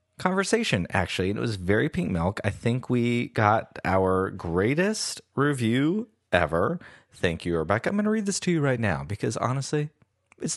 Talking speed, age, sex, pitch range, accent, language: 170 wpm, 30-49, male, 90-120 Hz, American, English